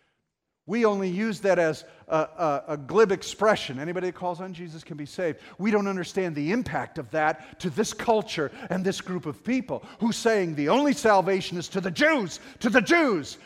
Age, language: 50-69, English